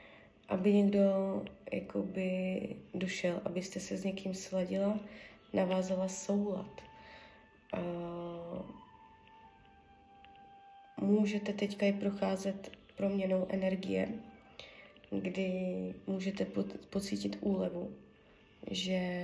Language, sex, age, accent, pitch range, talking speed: Czech, female, 20-39, native, 180-205 Hz, 80 wpm